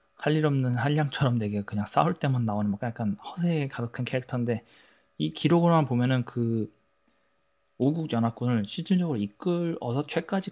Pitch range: 105-140 Hz